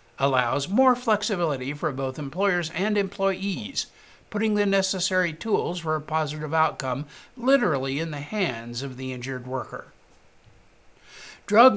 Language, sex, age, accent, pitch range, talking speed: English, male, 60-79, American, 145-205 Hz, 125 wpm